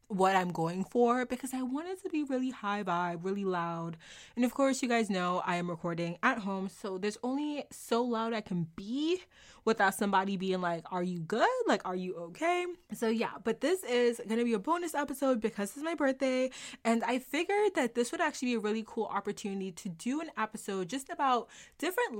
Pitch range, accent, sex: 190-255 Hz, American, female